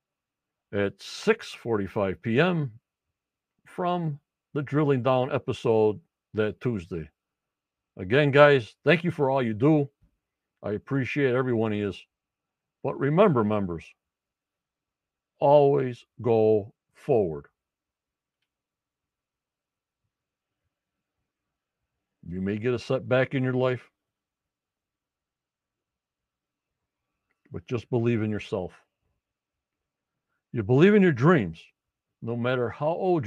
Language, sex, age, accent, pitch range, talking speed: English, male, 60-79, American, 110-160 Hz, 90 wpm